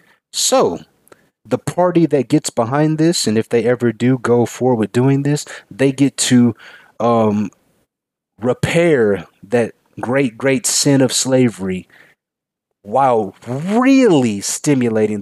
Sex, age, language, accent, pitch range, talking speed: male, 30-49, English, American, 105-135 Hz, 120 wpm